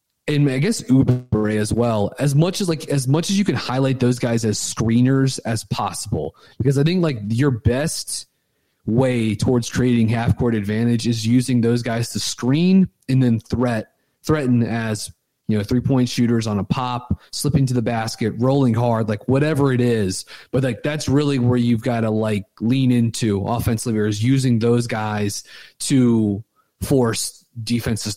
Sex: male